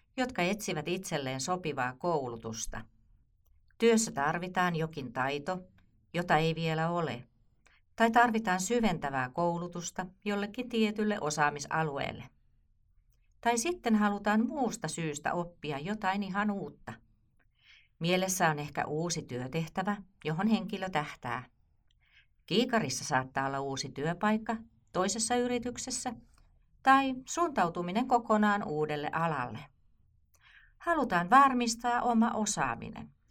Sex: female